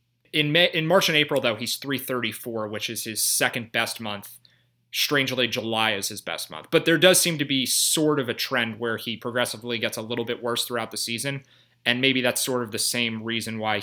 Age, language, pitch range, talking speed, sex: 30-49, English, 110-130 Hz, 215 wpm, male